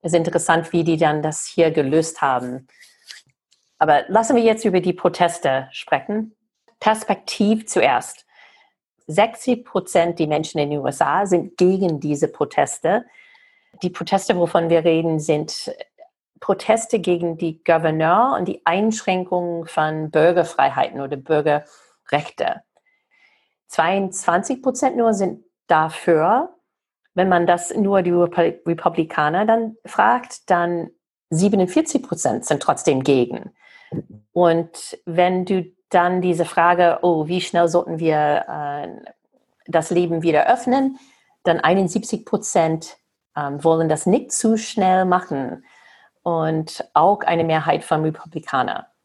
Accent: German